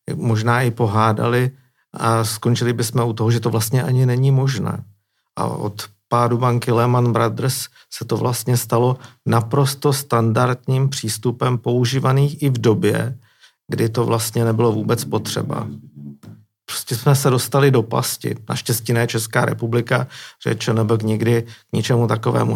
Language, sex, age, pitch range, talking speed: Czech, male, 50-69, 115-130 Hz, 140 wpm